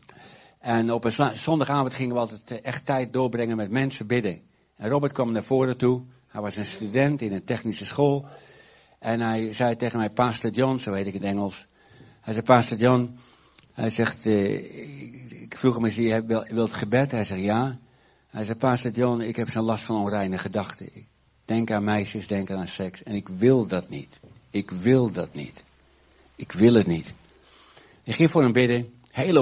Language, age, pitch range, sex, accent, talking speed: Dutch, 60-79, 100-125 Hz, male, Dutch, 190 wpm